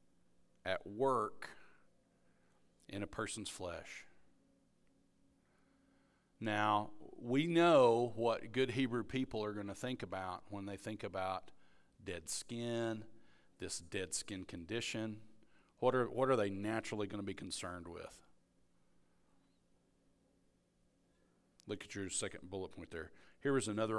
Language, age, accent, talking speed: English, 40-59, American, 120 wpm